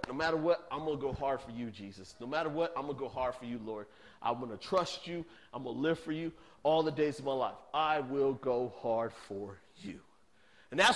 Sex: male